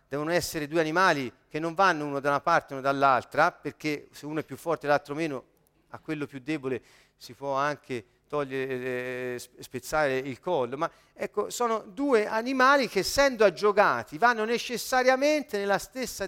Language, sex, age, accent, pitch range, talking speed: Italian, male, 40-59, native, 170-230 Hz, 165 wpm